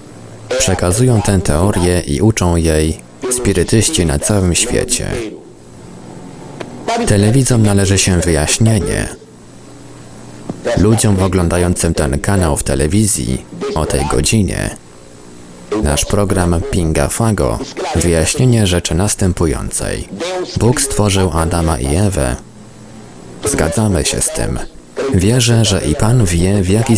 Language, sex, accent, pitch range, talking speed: Polish, male, native, 75-105 Hz, 100 wpm